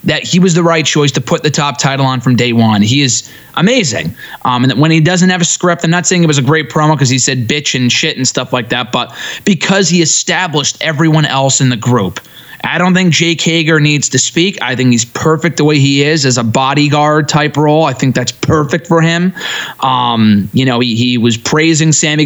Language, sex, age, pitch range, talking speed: English, male, 20-39, 135-175 Hz, 240 wpm